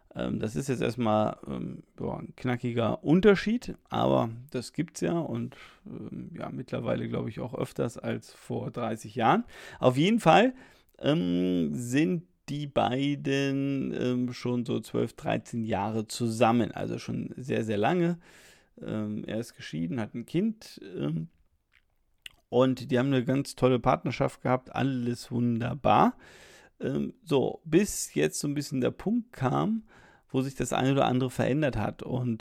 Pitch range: 110-140 Hz